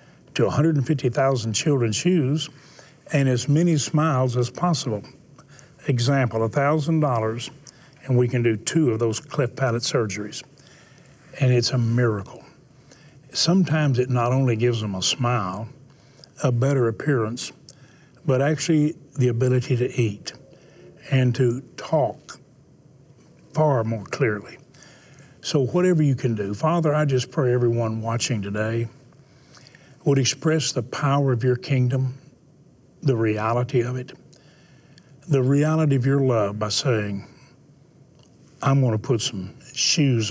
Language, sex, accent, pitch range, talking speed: English, male, American, 120-145 Hz, 125 wpm